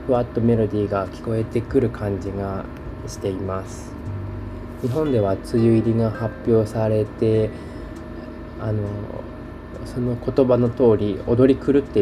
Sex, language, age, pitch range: male, Japanese, 20-39, 100-120 Hz